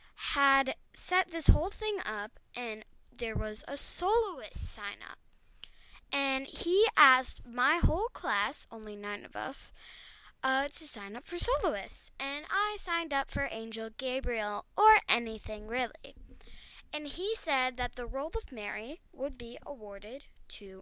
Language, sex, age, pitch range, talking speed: English, female, 10-29, 230-300 Hz, 145 wpm